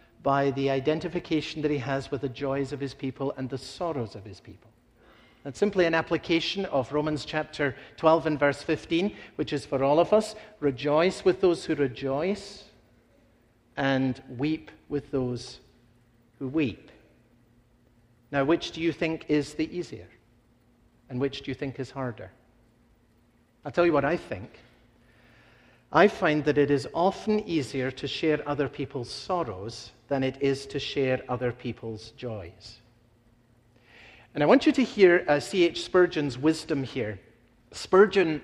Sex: male